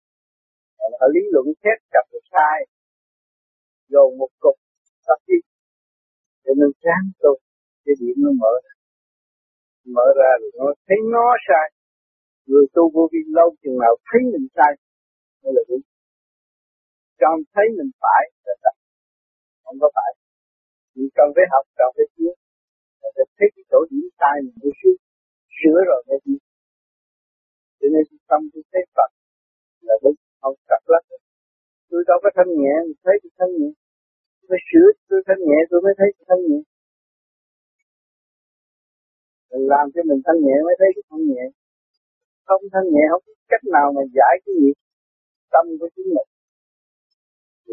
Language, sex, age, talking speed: Vietnamese, male, 50-69, 155 wpm